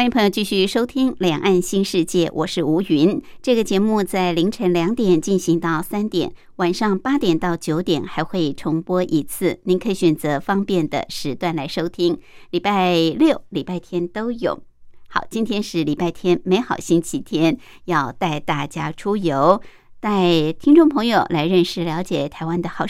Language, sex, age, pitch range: Chinese, male, 60-79, 165-210 Hz